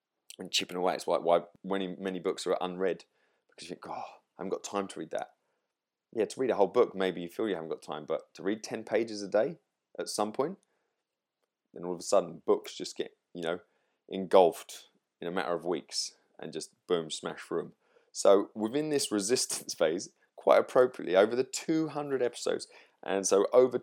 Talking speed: 205 wpm